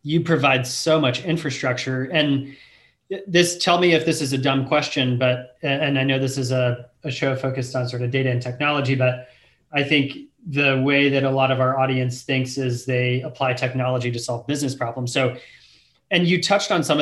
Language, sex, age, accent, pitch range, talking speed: English, male, 30-49, American, 130-150 Hz, 200 wpm